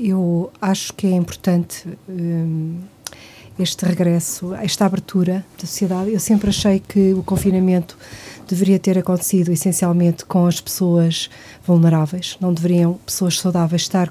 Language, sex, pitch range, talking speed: Portuguese, female, 180-205 Hz, 130 wpm